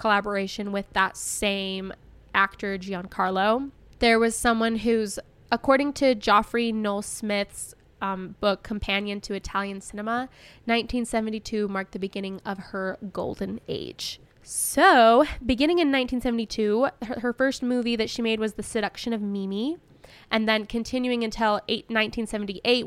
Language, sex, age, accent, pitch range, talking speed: English, female, 10-29, American, 205-235 Hz, 135 wpm